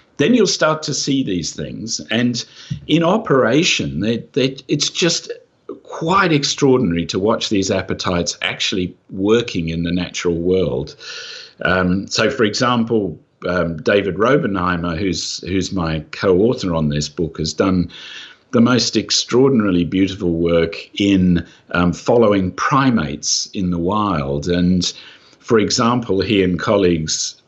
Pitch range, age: 90-125 Hz, 50-69